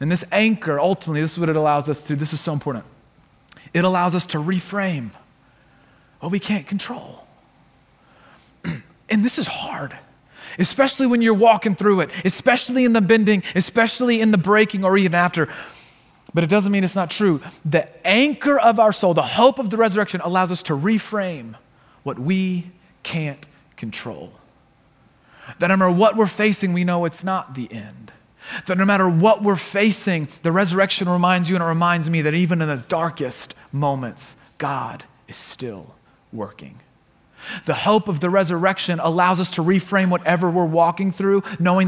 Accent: American